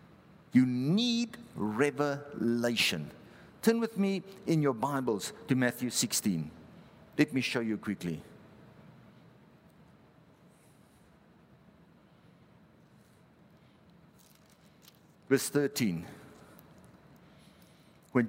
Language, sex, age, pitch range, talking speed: English, male, 50-69, 135-220 Hz, 65 wpm